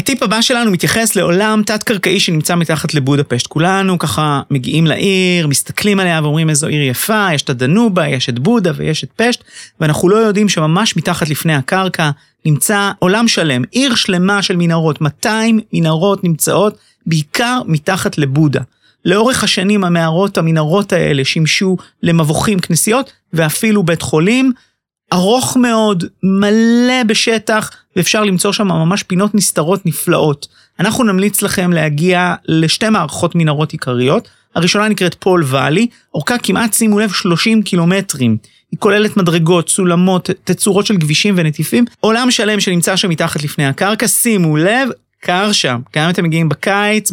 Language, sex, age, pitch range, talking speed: Hebrew, male, 30-49, 155-210 Hz, 140 wpm